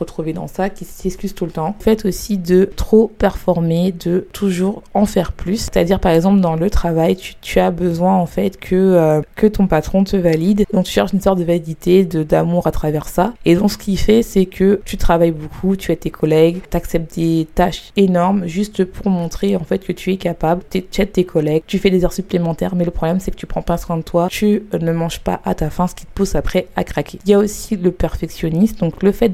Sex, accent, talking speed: female, French, 245 wpm